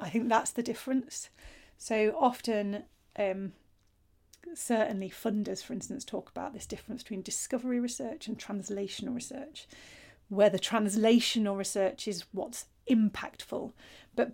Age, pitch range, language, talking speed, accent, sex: 40-59, 200-235 Hz, English, 125 wpm, British, female